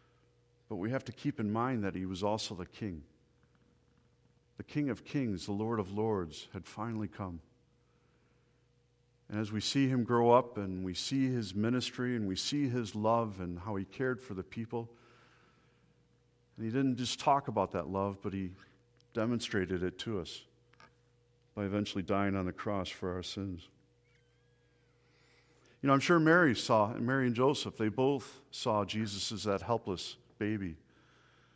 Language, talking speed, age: English, 170 wpm, 50-69